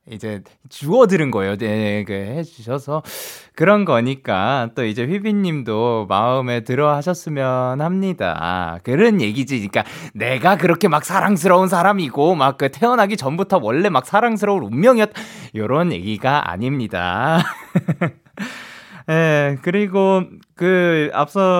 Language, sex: Korean, male